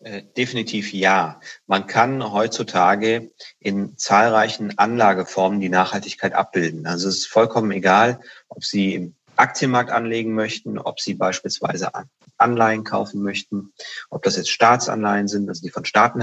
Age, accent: 30-49, German